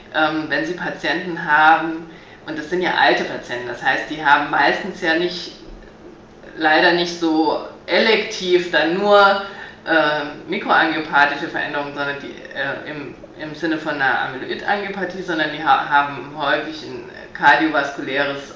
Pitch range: 155-195 Hz